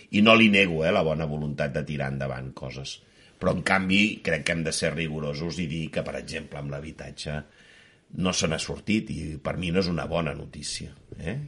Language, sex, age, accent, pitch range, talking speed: Spanish, male, 60-79, Spanish, 75-105 Hz, 205 wpm